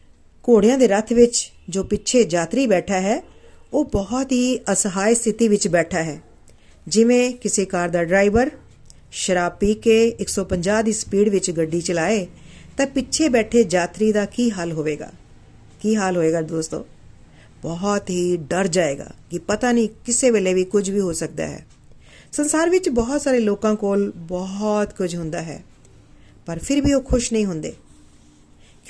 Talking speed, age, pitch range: 110 wpm, 40-59, 180-235 Hz